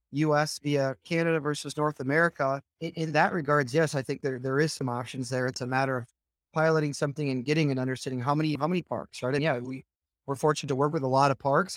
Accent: American